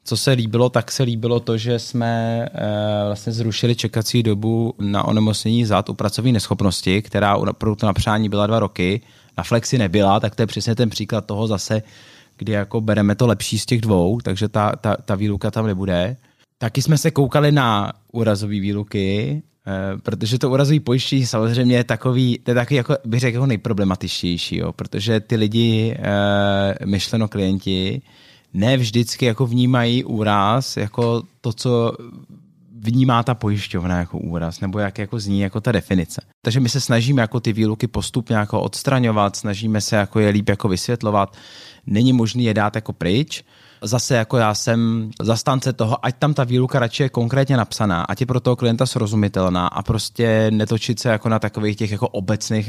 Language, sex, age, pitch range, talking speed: Czech, male, 20-39, 105-125 Hz, 170 wpm